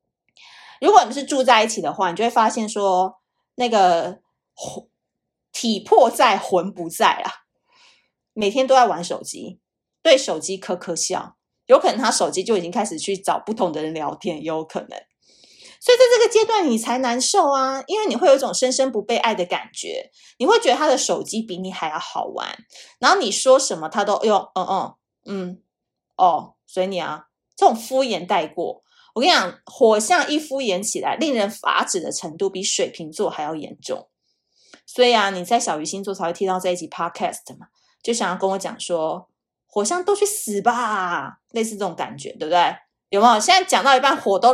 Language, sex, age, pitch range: Chinese, female, 30-49, 185-265 Hz